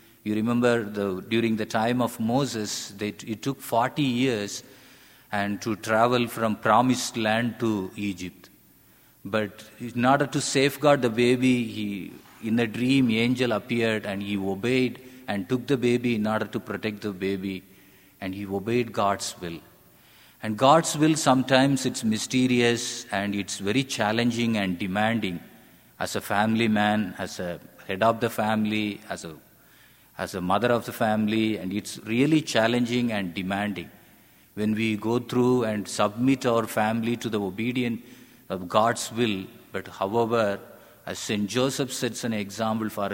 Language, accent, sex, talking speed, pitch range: English, Indian, male, 155 wpm, 100-120 Hz